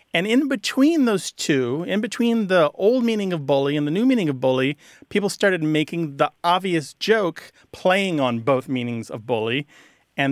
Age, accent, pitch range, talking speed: 40-59, American, 130-180 Hz, 180 wpm